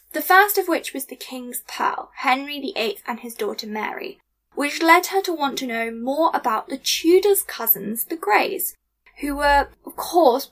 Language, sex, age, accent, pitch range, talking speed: English, female, 10-29, British, 235-335 Hz, 185 wpm